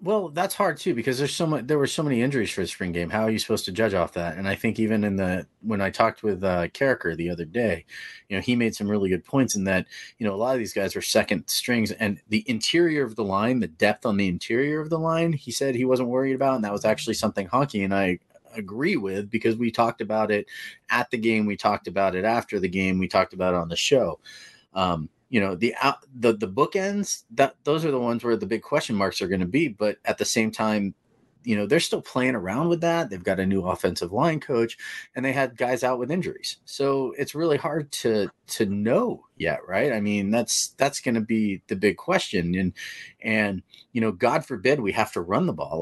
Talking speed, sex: 250 wpm, male